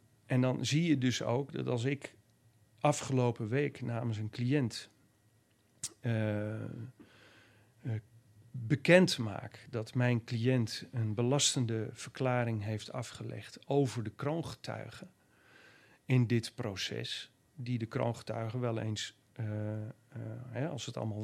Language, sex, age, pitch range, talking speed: Dutch, male, 40-59, 110-125 Hz, 115 wpm